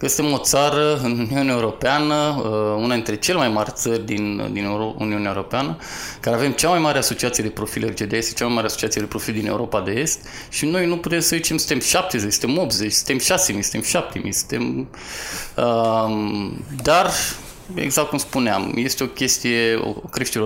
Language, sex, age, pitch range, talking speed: Romanian, male, 20-39, 105-130 Hz, 175 wpm